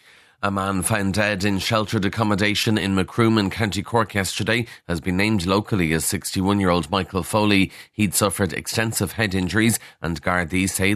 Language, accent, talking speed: English, Irish, 160 wpm